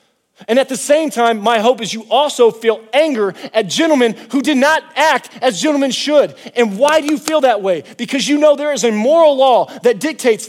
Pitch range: 200-265 Hz